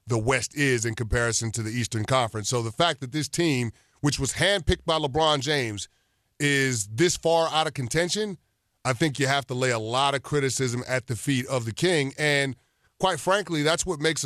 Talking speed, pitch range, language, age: 205 wpm, 130-155 Hz, English, 30-49